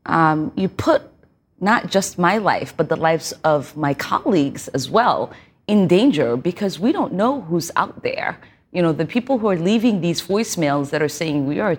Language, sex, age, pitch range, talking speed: English, female, 30-49, 155-215 Hz, 195 wpm